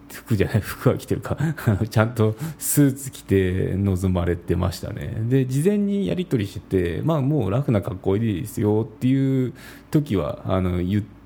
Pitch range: 95-130 Hz